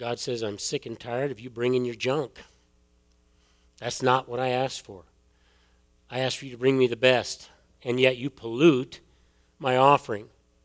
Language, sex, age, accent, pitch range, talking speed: English, male, 50-69, American, 120-180 Hz, 180 wpm